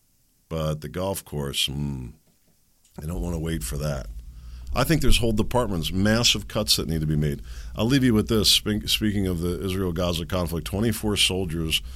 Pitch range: 75-100 Hz